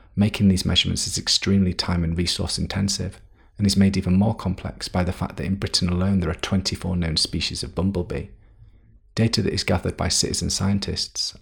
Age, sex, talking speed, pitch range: 40-59, male, 190 wpm, 90-100 Hz